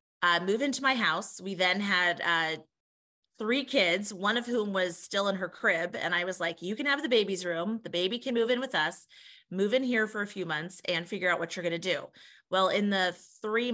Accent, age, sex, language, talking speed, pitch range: American, 30-49, female, English, 240 wpm, 175-215 Hz